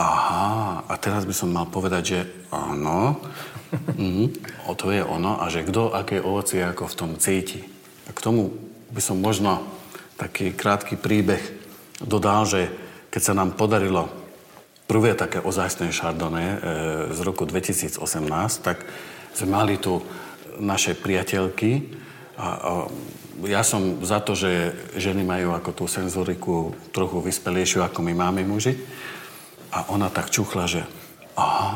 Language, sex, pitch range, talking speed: Slovak, male, 90-105 Hz, 140 wpm